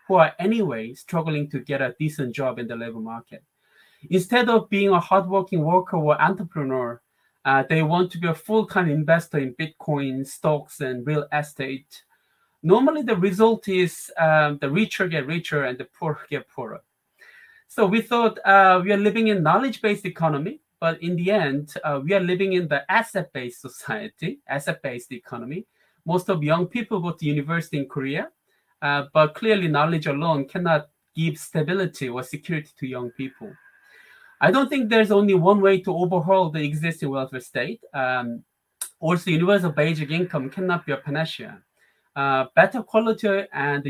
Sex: male